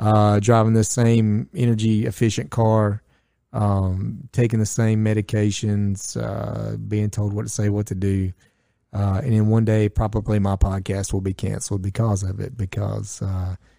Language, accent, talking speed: English, American, 160 wpm